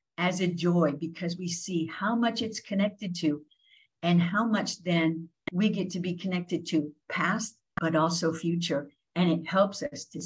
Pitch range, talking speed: 165-205 Hz, 175 wpm